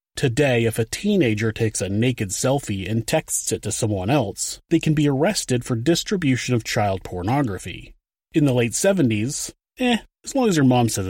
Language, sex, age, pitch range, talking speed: English, male, 30-49, 110-150 Hz, 185 wpm